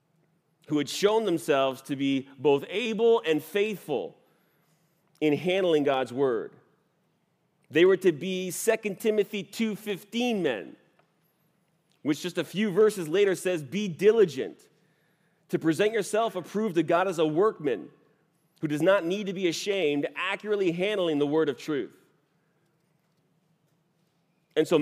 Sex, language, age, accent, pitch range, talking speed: male, English, 30-49, American, 165-215 Hz, 135 wpm